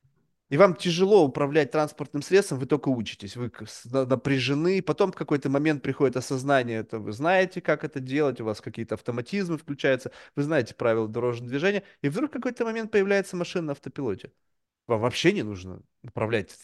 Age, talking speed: 20-39, 165 wpm